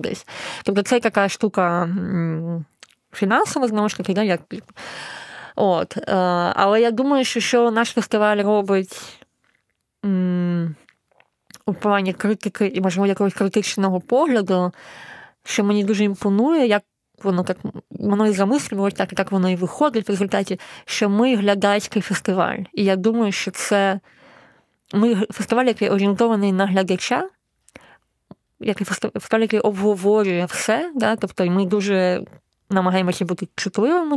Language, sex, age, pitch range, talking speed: Ukrainian, female, 20-39, 180-210 Hz, 125 wpm